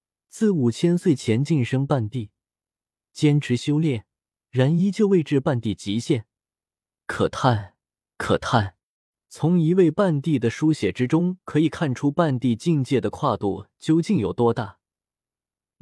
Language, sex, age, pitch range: Chinese, male, 20-39, 115-160 Hz